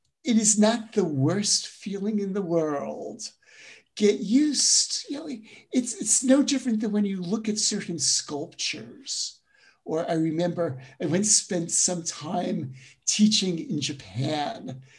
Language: English